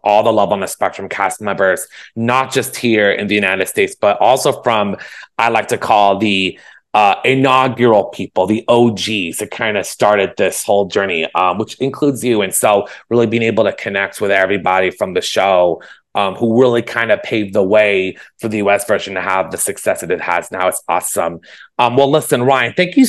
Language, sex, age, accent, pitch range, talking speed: English, male, 30-49, American, 105-145 Hz, 205 wpm